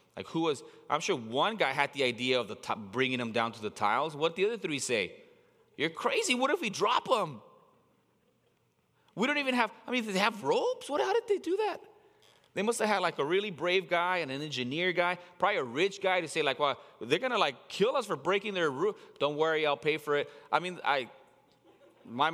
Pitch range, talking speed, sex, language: 150-195 Hz, 240 wpm, male, English